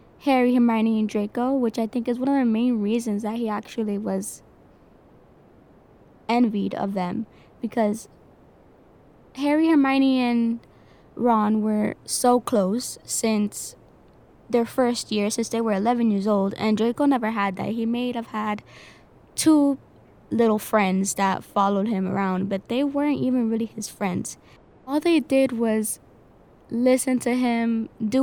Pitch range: 210-250 Hz